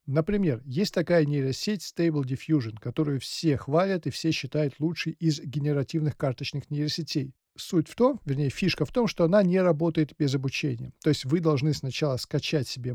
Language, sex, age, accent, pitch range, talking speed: Russian, male, 40-59, native, 135-170 Hz, 170 wpm